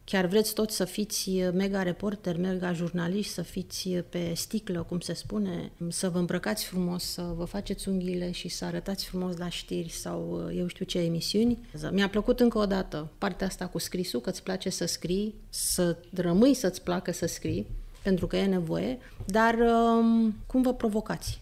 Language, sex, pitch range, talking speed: English, female, 175-210 Hz, 175 wpm